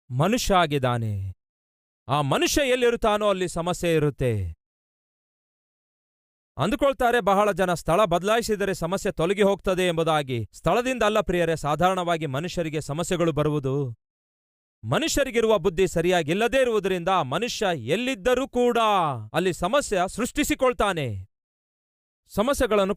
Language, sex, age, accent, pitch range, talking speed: Kannada, male, 40-59, native, 155-210 Hz, 90 wpm